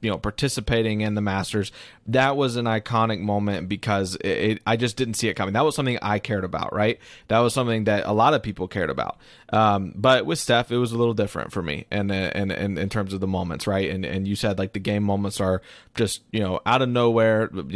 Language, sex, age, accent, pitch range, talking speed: English, male, 20-39, American, 100-120 Hz, 250 wpm